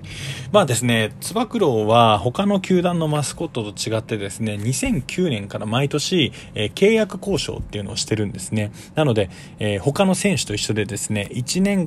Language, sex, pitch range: Japanese, male, 105-170 Hz